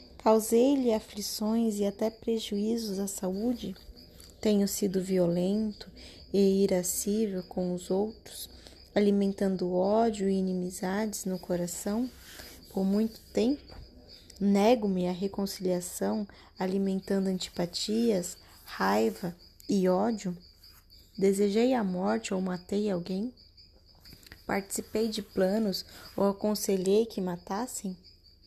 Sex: female